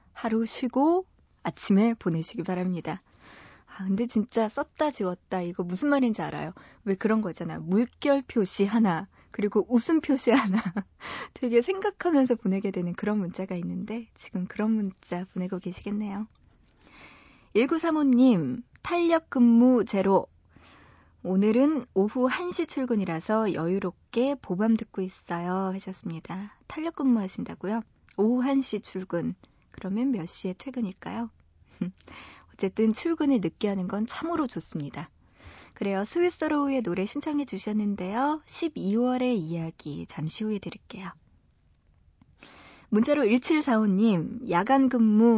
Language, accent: Korean, native